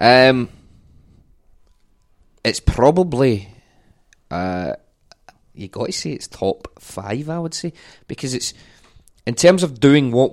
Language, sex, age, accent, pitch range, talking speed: English, male, 20-39, British, 100-125 Hz, 115 wpm